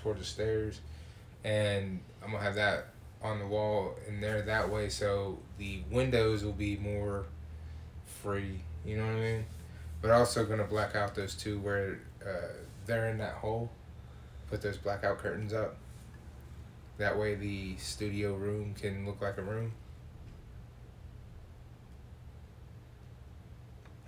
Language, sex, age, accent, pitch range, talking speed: English, male, 20-39, American, 100-110 Hz, 135 wpm